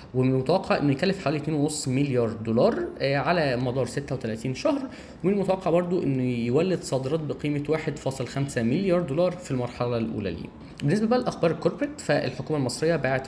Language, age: Arabic, 10-29